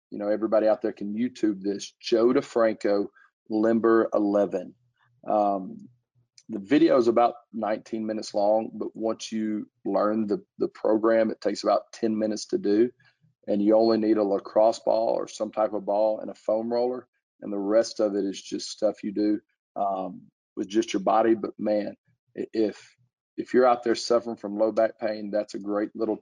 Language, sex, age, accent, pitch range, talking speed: English, male, 40-59, American, 105-115 Hz, 185 wpm